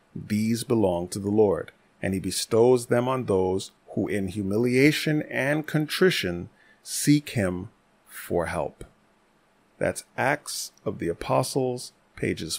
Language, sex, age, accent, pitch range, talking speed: English, male, 30-49, American, 100-145 Hz, 125 wpm